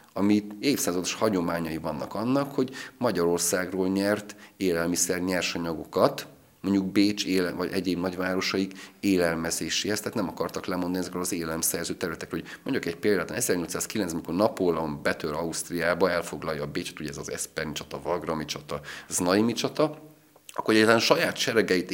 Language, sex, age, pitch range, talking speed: Hungarian, male, 30-49, 85-100 Hz, 130 wpm